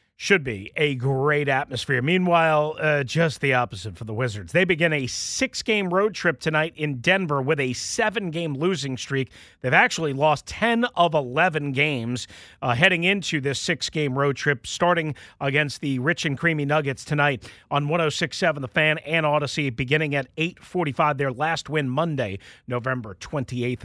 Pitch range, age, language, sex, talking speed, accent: 130-165 Hz, 40-59, English, male, 160 wpm, American